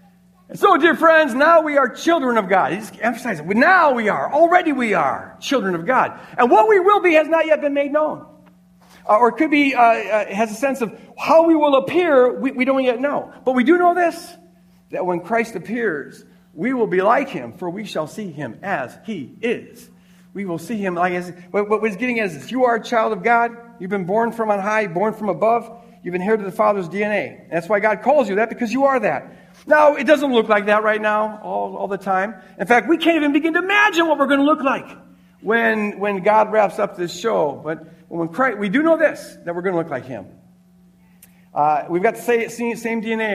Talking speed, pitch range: 235 wpm, 185-270 Hz